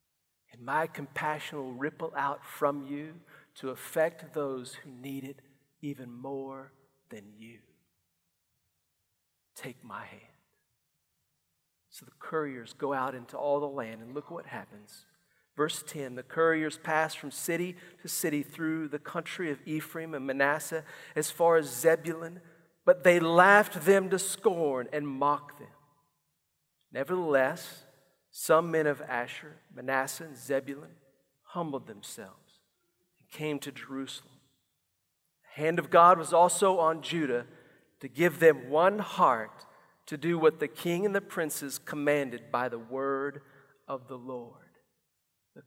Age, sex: 50-69, male